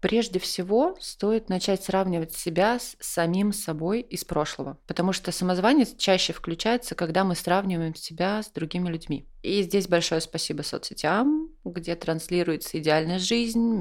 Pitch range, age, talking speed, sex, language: 160-195 Hz, 20-39, 140 wpm, female, Russian